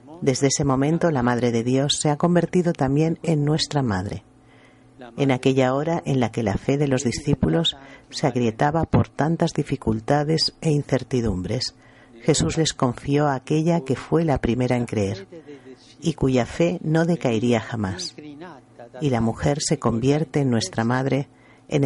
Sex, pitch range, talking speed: female, 120-150 Hz, 160 wpm